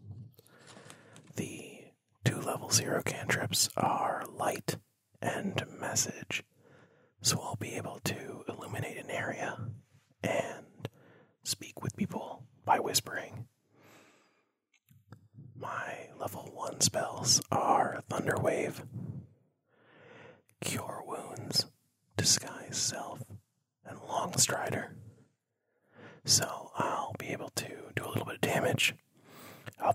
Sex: male